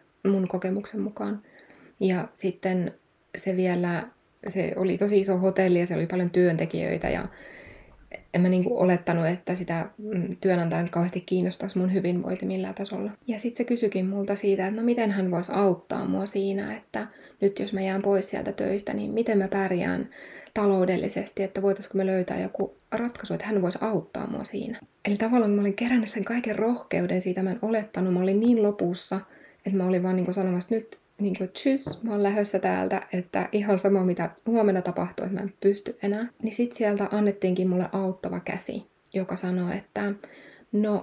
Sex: female